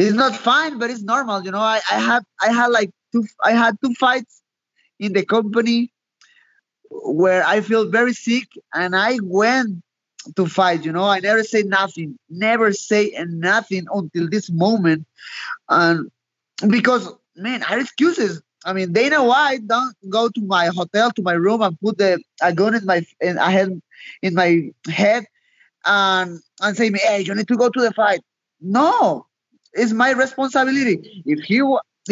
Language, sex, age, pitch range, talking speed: English, male, 20-39, 185-240 Hz, 175 wpm